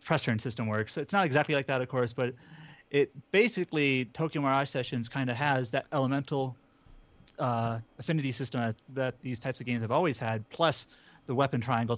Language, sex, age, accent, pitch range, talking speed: English, male, 30-49, American, 120-145 Hz, 185 wpm